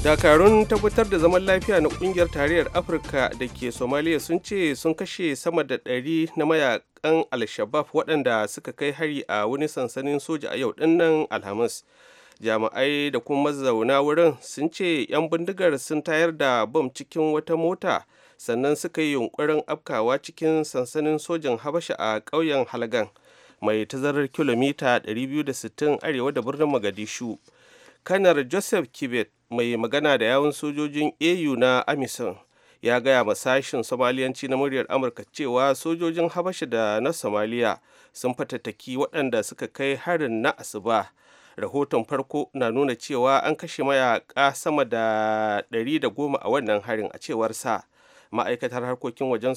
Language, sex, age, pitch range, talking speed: English, male, 30-49, 125-160 Hz, 140 wpm